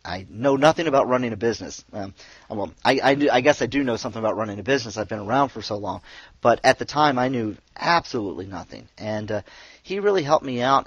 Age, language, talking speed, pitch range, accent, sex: 40-59, English, 235 wpm, 100-125 Hz, American, male